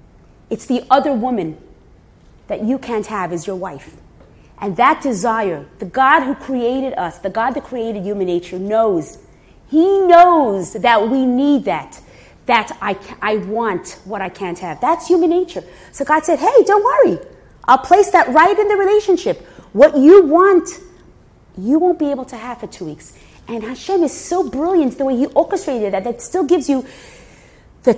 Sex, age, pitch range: female, 30-49, 210-315 Hz